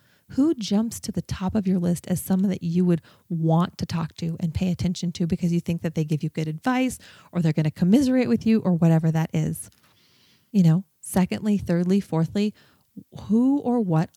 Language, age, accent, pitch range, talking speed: English, 30-49, American, 170-210 Hz, 205 wpm